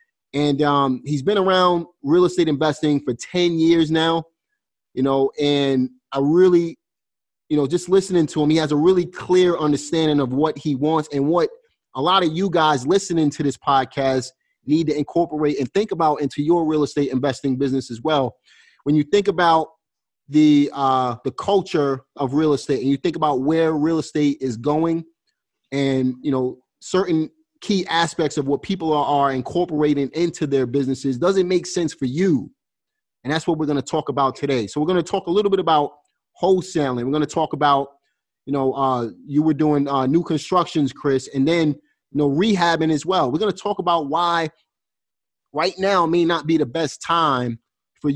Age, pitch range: 30-49, 140-170 Hz